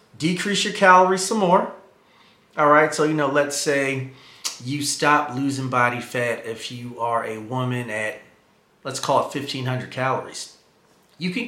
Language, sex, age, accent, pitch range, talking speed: English, male, 30-49, American, 125-160 Hz, 155 wpm